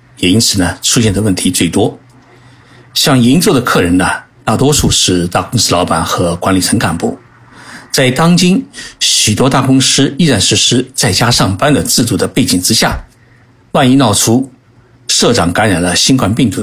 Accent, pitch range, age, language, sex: native, 95-125 Hz, 60-79, Chinese, male